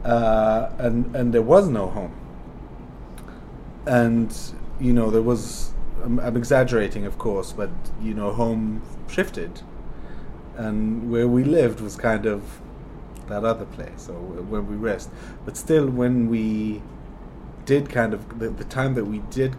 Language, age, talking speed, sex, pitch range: English, 30-49, 145 wpm, male, 105-120 Hz